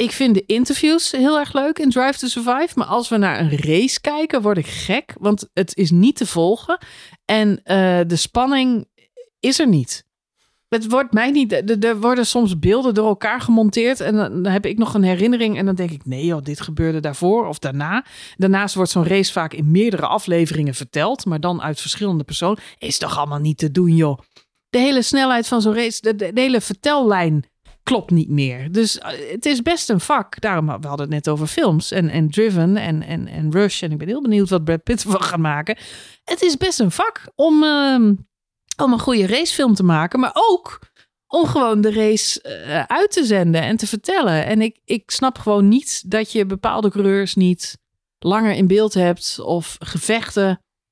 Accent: Dutch